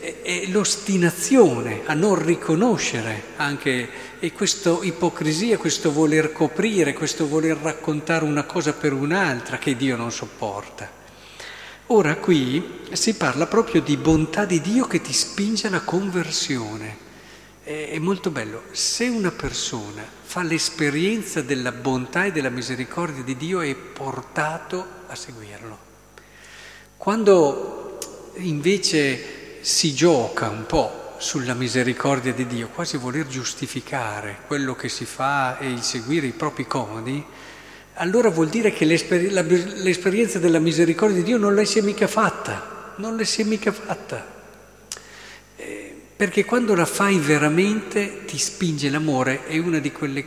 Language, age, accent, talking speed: Italian, 50-69, native, 135 wpm